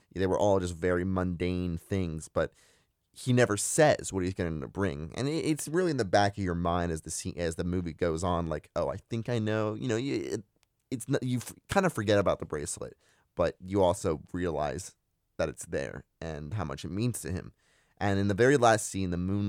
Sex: male